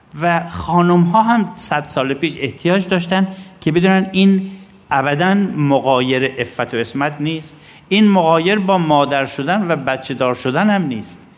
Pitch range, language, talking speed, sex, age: 125-175 Hz, Persian, 155 wpm, male, 60-79